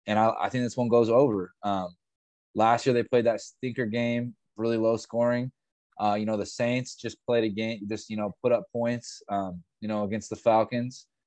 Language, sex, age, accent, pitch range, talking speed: English, male, 20-39, American, 100-115 Hz, 215 wpm